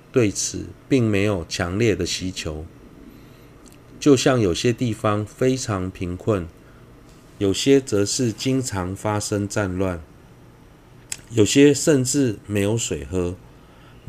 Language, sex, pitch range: Chinese, male, 95-125 Hz